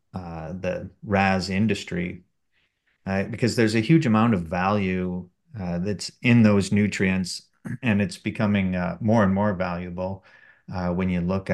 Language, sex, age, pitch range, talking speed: English, male, 30-49, 90-100 Hz, 150 wpm